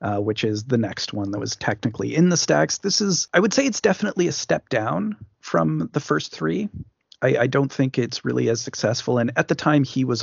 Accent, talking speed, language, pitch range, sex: American, 235 wpm, English, 105-130 Hz, male